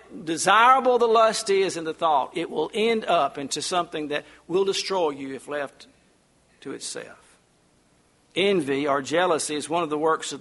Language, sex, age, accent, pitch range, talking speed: English, male, 50-69, American, 145-215 Hz, 175 wpm